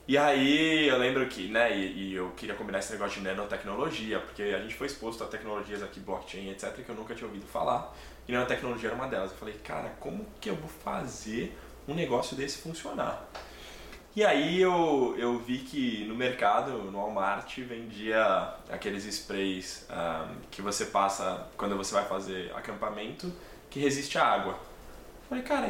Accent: Brazilian